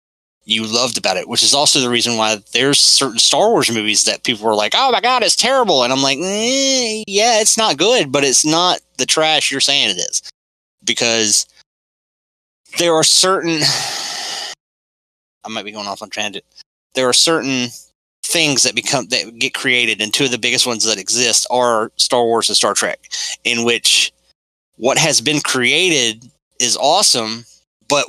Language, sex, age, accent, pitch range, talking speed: English, male, 20-39, American, 110-135 Hz, 180 wpm